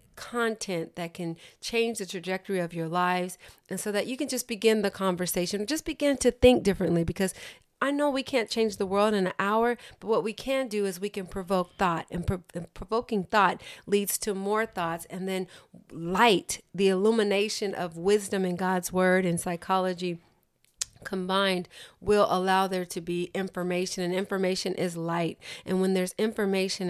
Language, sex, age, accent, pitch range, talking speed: English, female, 40-59, American, 180-210 Hz, 175 wpm